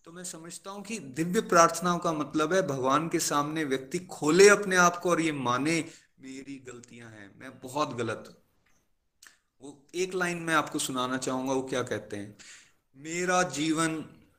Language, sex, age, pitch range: Hindi, male, 30-49, 140-190 Hz